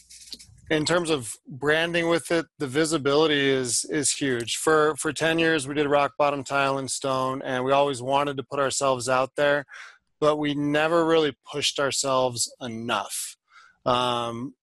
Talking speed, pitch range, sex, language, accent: 160 wpm, 135-160 Hz, male, English, American